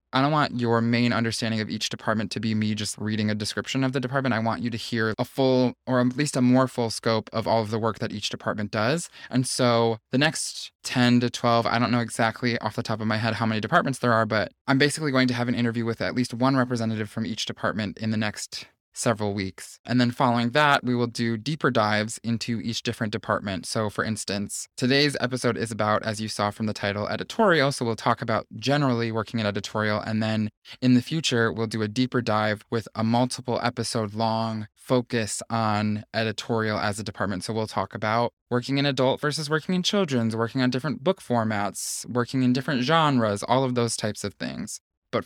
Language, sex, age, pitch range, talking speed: English, male, 20-39, 110-130 Hz, 225 wpm